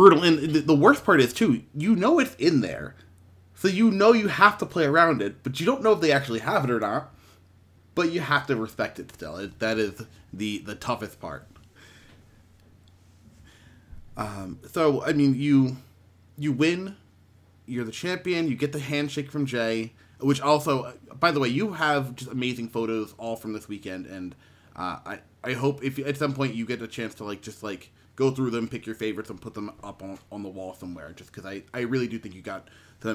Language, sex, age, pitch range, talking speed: English, male, 30-49, 100-140 Hz, 215 wpm